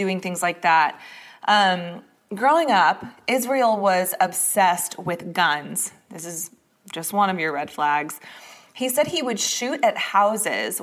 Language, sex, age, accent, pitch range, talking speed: English, female, 20-39, American, 180-225 Hz, 150 wpm